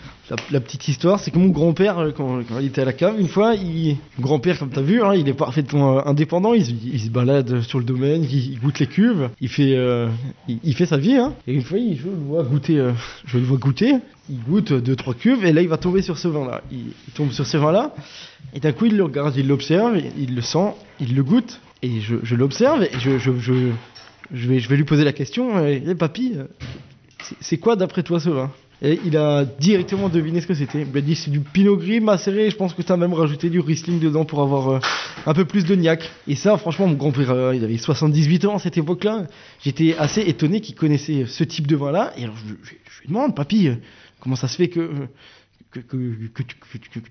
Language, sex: French, male